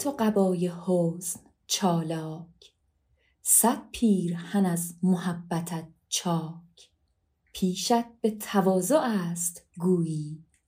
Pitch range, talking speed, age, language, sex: 165-200 Hz, 85 wpm, 30-49, Persian, female